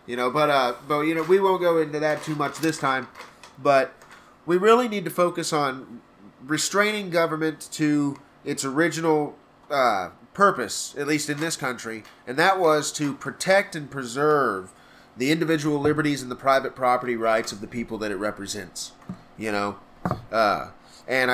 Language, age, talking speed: English, 30-49, 170 wpm